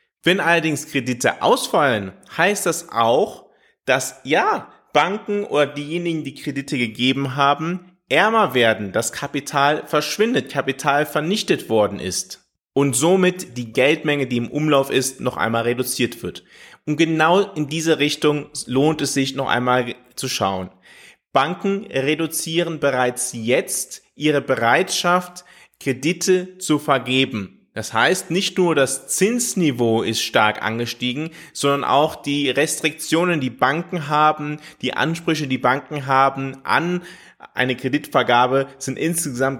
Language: German